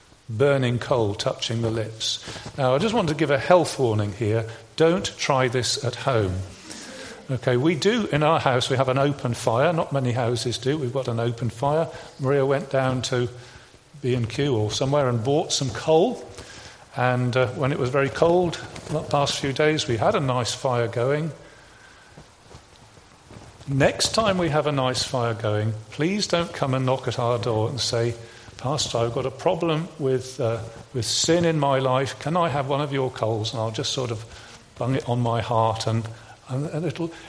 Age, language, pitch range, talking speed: 40-59, English, 115-150 Hz, 190 wpm